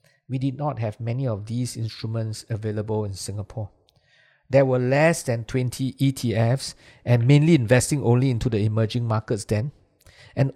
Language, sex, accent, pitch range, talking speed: English, male, Malaysian, 115-140 Hz, 155 wpm